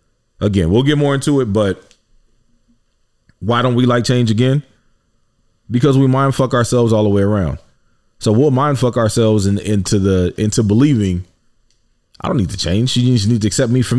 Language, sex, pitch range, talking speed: English, male, 100-120 Hz, 190 wpm